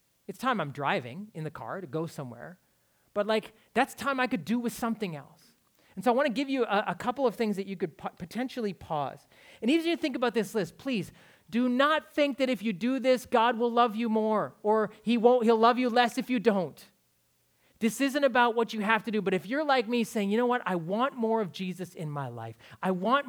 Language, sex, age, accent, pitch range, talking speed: English, male, 30-49, American, 160-230 Hz, 245 wpm